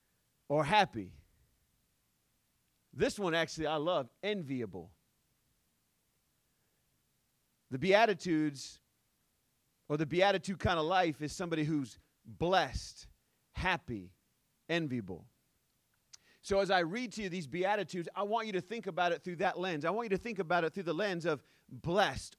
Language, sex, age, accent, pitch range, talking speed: English, male, 40-59, American, 130-190 Hz, 140 wpm